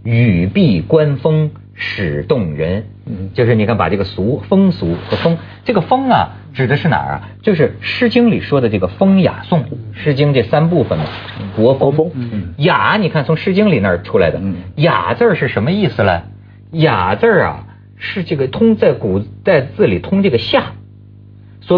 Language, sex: Chinese, male